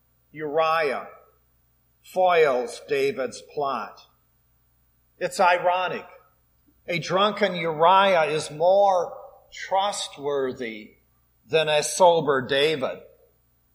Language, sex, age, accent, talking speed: English, male, 50-69, American, 70 wpm